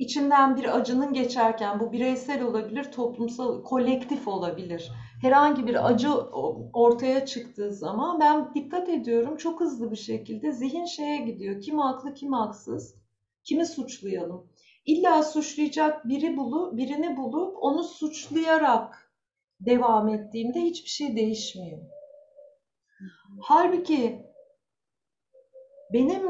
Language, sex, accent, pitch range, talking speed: Turkish, female, native, 220-290 Hz, 105 wpm